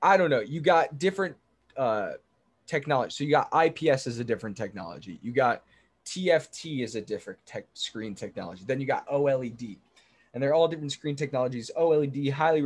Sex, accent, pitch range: male, American, 125-155 Hz